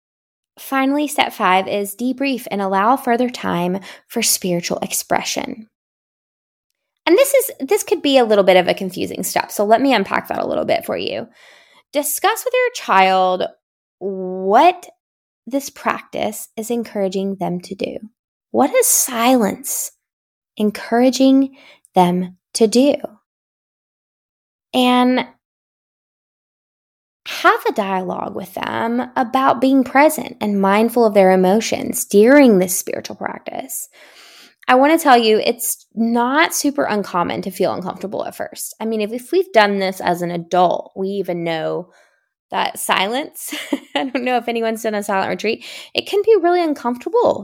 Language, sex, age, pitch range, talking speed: English, female, 10-29, 195-290 Hz, 145 wpm